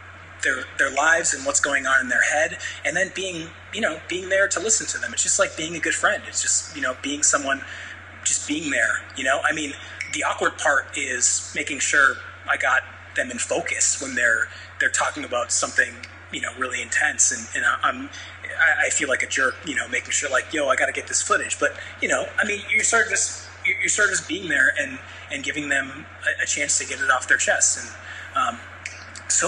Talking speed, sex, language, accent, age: 225 wpm, male, English, American, 20-39